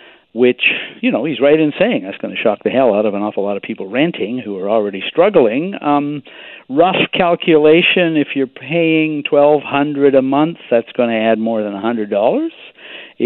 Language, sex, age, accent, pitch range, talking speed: English, male, 60-79, American, 115-175 Hz, 185 wpm